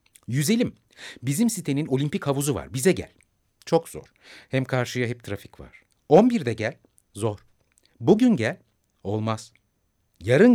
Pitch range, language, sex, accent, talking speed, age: 100-160 Hz, Turkish, male, native, 130 wpm, 60-79